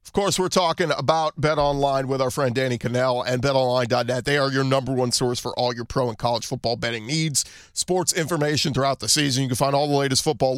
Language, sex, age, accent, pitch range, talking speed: English, male, 40-59, American, 125-155 Hz, 235 wpm